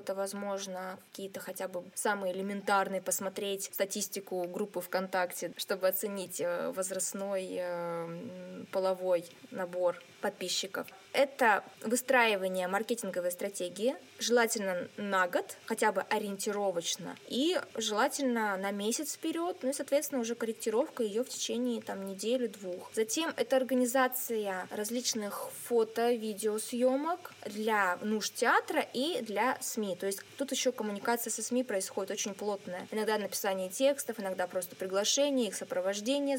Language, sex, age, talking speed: Russian, female, 20-39, 115 wpm